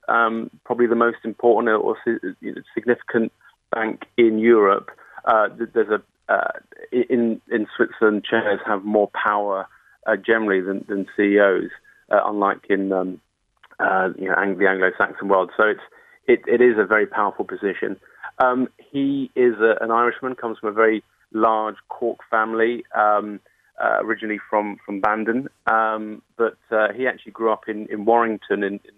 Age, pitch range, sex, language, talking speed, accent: 30-49, 100-115 Hz, male, English, 160 wpm, British